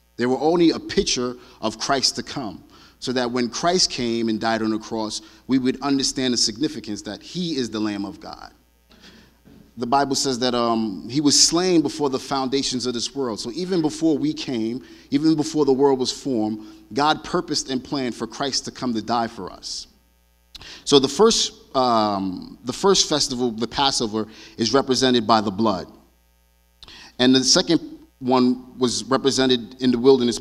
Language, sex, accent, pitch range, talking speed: English, male, American, 110-140 Hz, 180 wpm